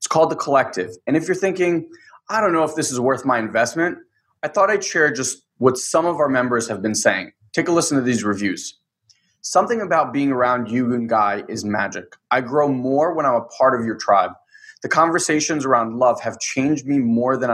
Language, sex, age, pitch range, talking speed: English, male, 20-39, 120-155 Hz, 220 wpm